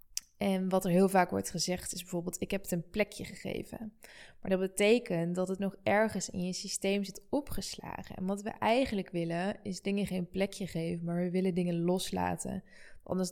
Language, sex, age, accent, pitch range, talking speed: Dutch, female, 20-39, Dutch, 180-205 Hz, 195 wpm